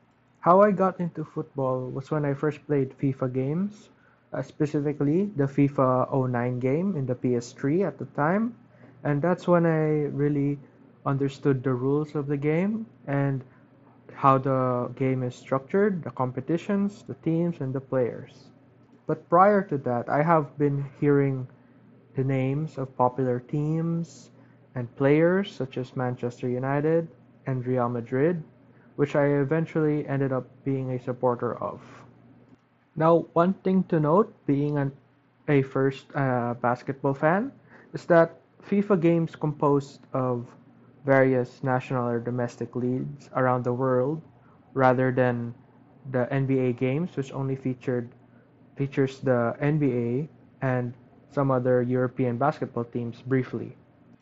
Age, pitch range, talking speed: 20-39, 125-155 Hz, 135 wpm